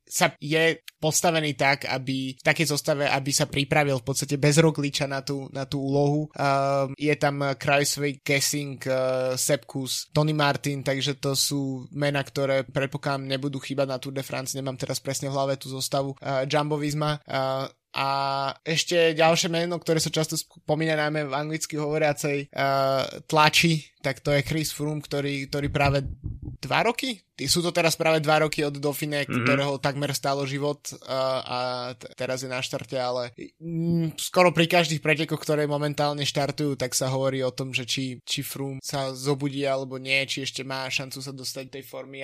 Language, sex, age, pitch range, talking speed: Slovak, male, 20-39, 130-150 Hz, 175 wpm